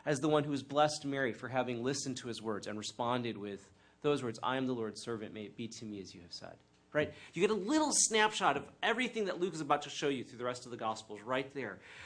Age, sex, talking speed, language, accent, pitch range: 30-49, male, 275 wpm, English, American, 130-195 Hz